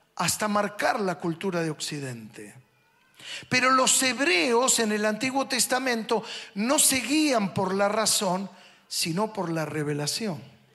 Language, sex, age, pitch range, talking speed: Spanish, male, 50-69, 190-255 Hz, 130 wpm